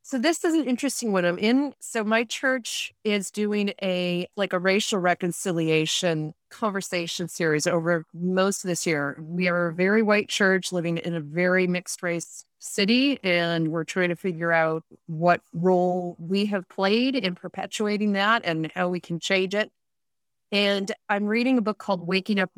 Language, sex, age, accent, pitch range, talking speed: English, female, 30-49, American, 170-205 Hz, 175 wpm